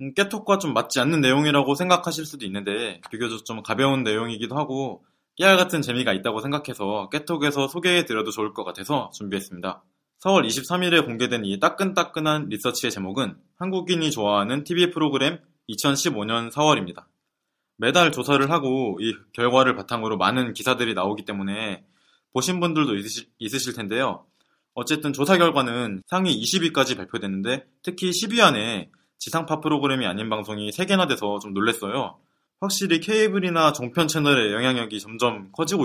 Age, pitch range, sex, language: 20-39, 110-165 Hz, male, Korean